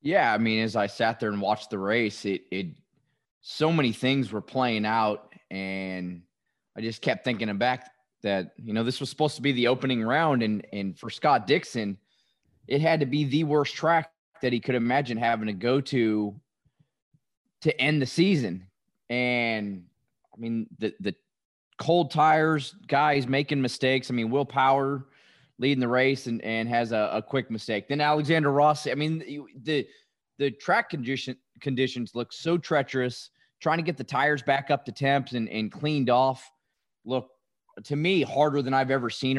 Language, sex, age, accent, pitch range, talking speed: English, male, 20-39, American, 115-145 Hz, 180 wpm